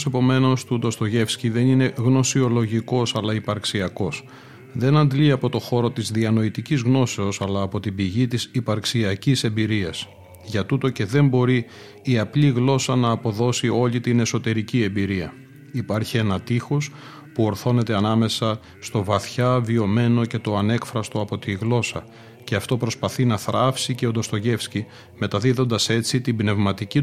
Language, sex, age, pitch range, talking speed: Greek, male, 40-59, 110-130 Hz, 140 wpm